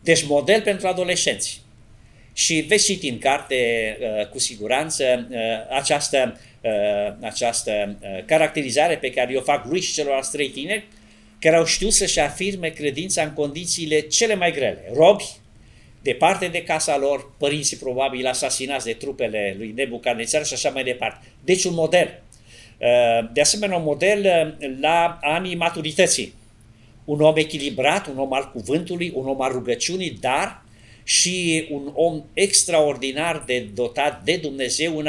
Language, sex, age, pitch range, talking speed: Romanian, male, 50-69, 120-165 Hz, 145 wpm